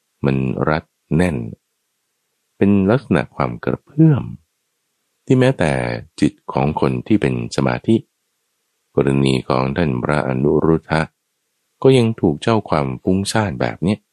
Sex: male